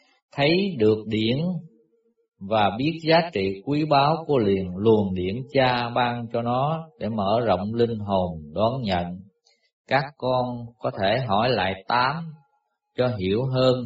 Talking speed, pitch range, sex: 145 wpm, 100-145 Hz, male